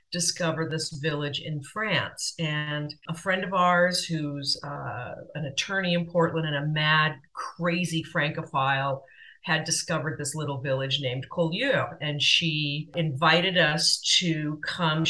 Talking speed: 135 wpm